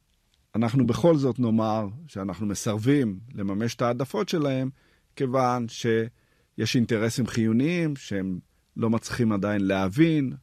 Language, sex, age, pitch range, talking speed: Hebrew, male, 50-69, 100-140 Hz, 110 wpm